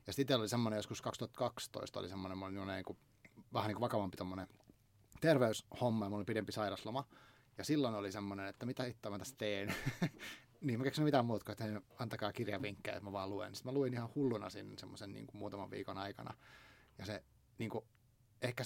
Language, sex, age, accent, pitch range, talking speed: Finnish, male, 30-49, native, 105-125 Hz, 190 wpm